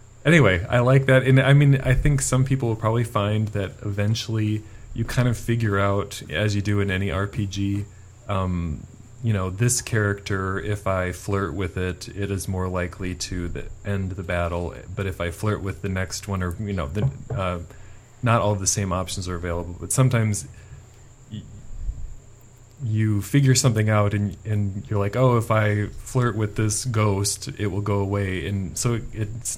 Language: English